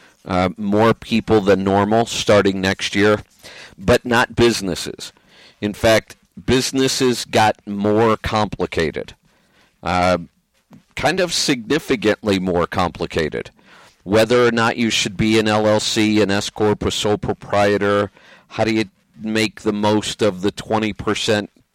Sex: male